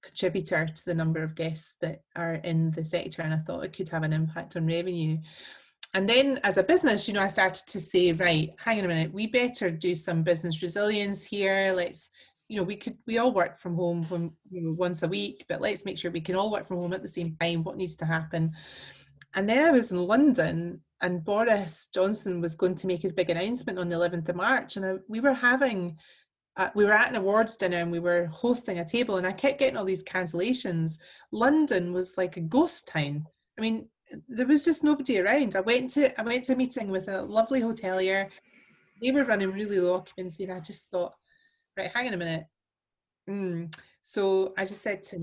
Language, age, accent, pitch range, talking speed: English, 30-49, British, 170-210 Hz, 220 wpm